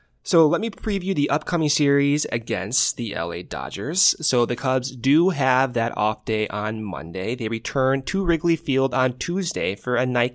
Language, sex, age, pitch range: English, male, 20-39, 105-145 Hz